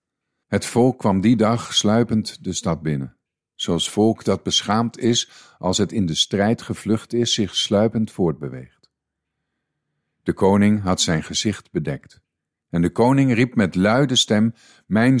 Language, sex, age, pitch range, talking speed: Dutch, male, 50-69, 90-125 Hz, 150 wpm